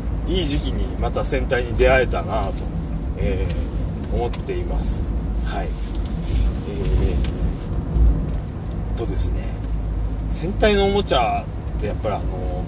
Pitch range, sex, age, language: 80-110 Hz, male, 30-49, Japanese